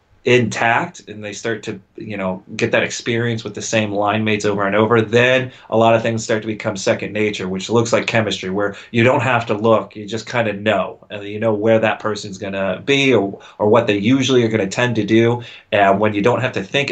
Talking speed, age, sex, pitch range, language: 240 wpm, 30-49, male, 100-115 Hz, English